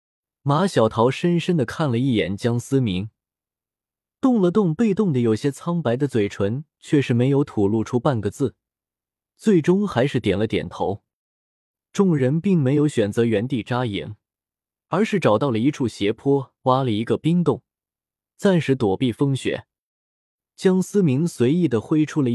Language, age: Chinese, 20-39